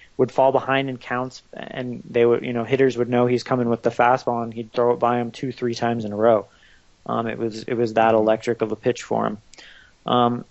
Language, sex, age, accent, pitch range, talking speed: English, male, 20-39, American, 115-130 Hz, 245 wpm